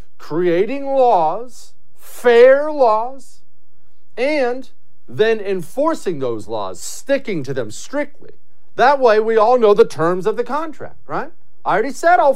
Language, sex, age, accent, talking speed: English, male, 40-59, American, 135 wpm